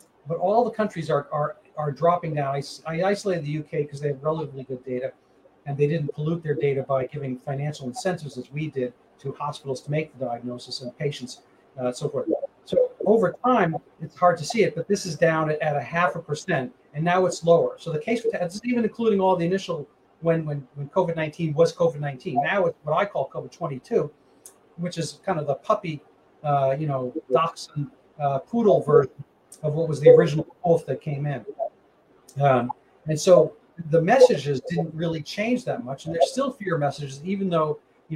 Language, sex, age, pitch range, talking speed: English, male, 40-59, 140-170 Hz, 200 wpm